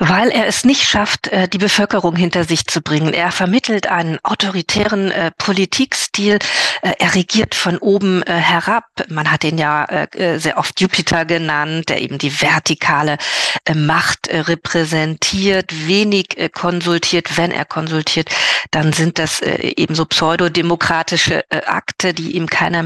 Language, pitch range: German, 160-195 Hz